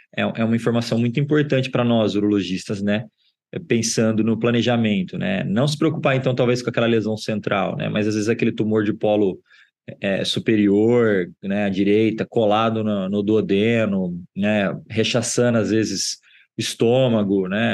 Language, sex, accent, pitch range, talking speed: Portuguese, male, Brazilian, 105-125 Hz, 150 wpm